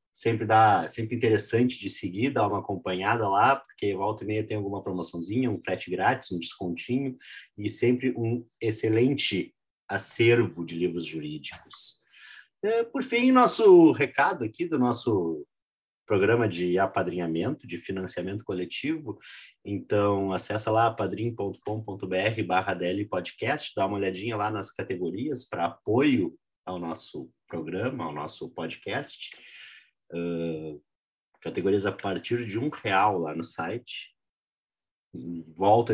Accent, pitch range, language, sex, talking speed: Brazilian, 90-120 Hz, Portuguese, male, 125 wpm